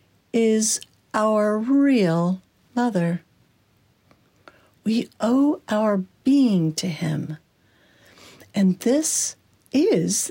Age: 60-79